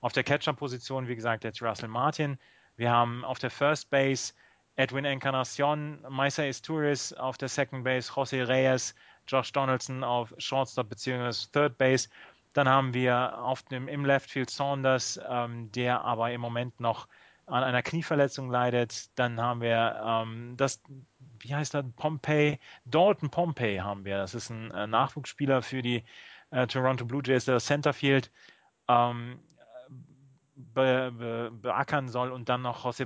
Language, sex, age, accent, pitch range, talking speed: German, male, 30-49, German, 115-135 Hz, 150 wpm